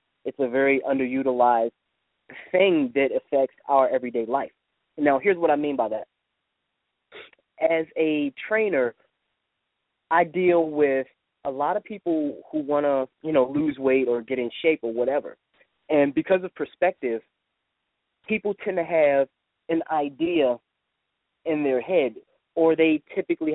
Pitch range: 130-175 Hz